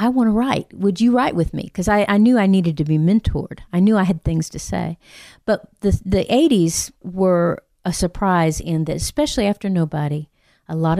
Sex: female